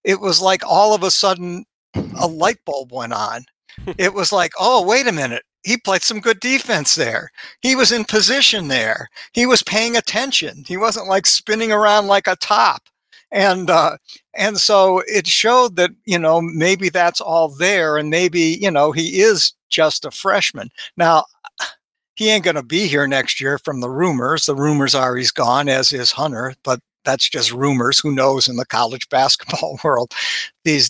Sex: male